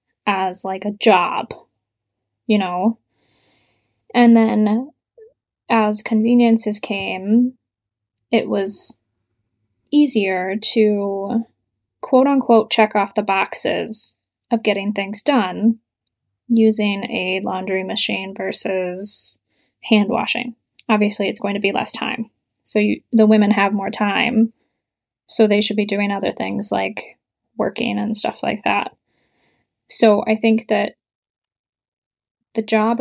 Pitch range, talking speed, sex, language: 200-235 Hz, 115 wpm, female, English